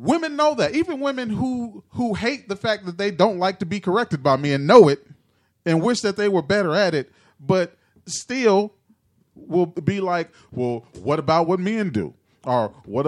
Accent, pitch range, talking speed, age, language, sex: American, 120-175 Hz, 195 wpm, 30-49, English, male